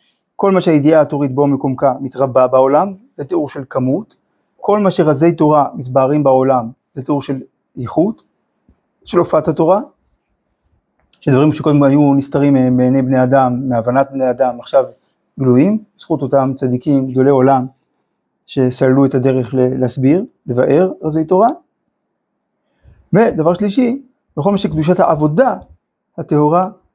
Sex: male